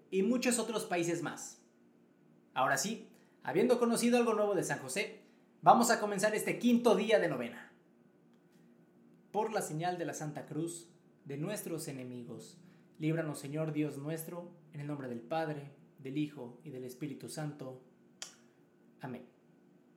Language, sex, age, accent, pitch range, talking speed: Spanish, male, 20-39, Mexican, 125-180 Hz, 145 wpm